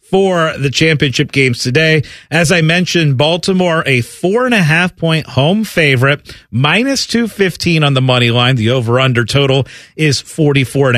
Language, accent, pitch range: English, American, 130-175 Hz